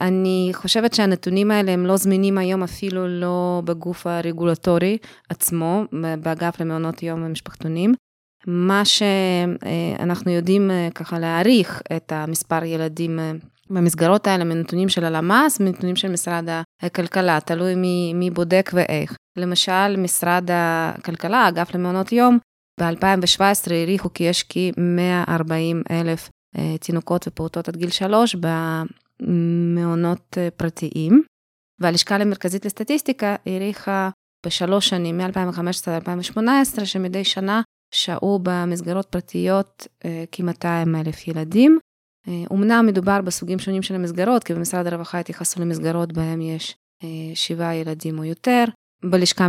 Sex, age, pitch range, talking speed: female, 20-39, 165-190 Hz, 115 wpm